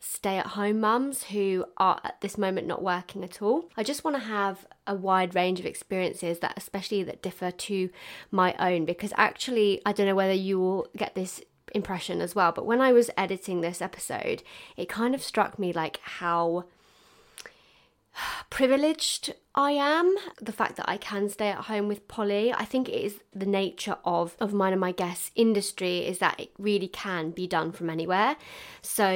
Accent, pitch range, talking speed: British, 180-210 Hz, 185 wpm